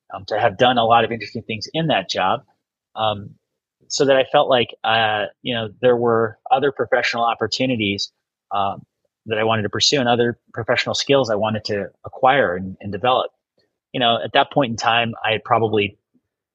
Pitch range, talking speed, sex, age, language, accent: 105-120 Hz, 190 wpm, male, 30-49, English, American